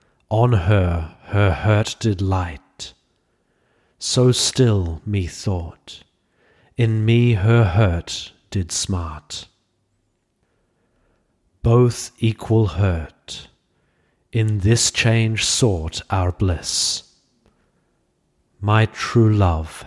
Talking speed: 80 wpm